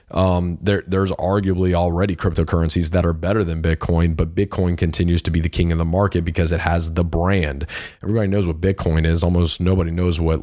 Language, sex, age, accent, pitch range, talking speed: English, male, 30-49, American, 85-100 Hz, 200 wpm